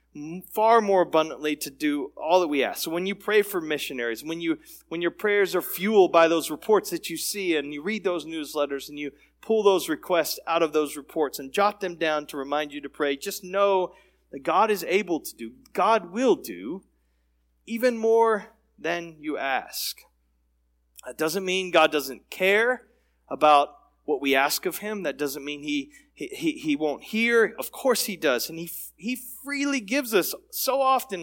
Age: 30-49